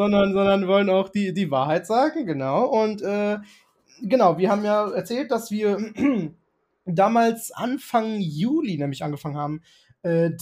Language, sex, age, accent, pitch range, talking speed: German, male, 20-39, German, 165-225 Hz, 150 wpm